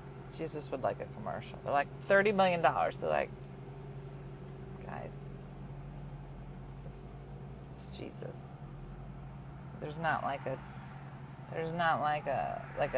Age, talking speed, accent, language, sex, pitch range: 40-59, 115 wpm, American, English, female, 135-180 Hz